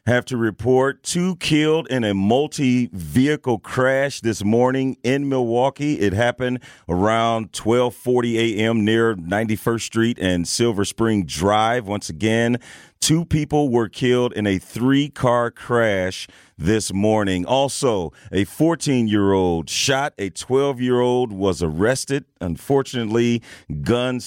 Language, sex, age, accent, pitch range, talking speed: English, male, 40-59, American, 100-130 Hz, 115 wpm